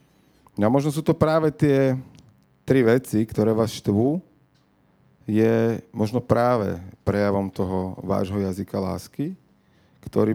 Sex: male